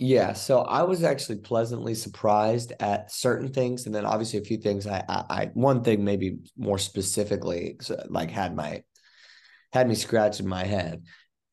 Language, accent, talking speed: English, American, 170 wpm